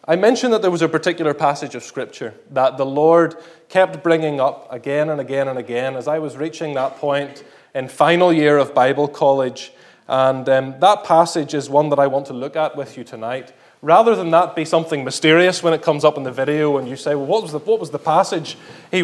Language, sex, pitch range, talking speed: English, male, 145-175 Hz, 225 wpm